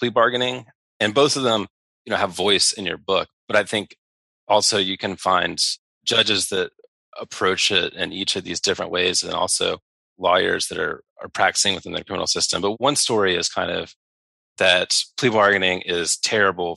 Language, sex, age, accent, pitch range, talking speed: English, male, 30-49, American, 90-110 Hz, 185 wpm